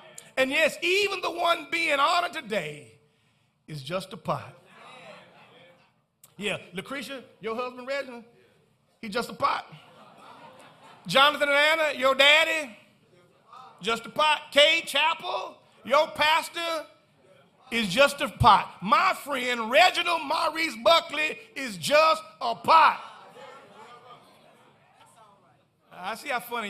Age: 40-59